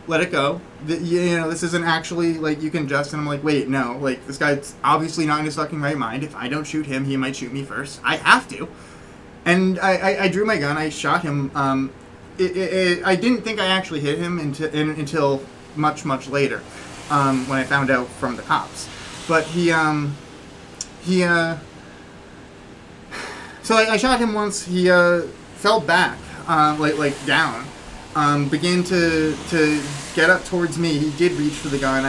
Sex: male